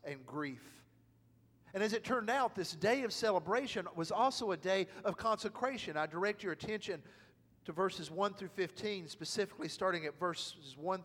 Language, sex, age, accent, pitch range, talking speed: English, male, 50-69, American, 135-190 Hz, 170 wpm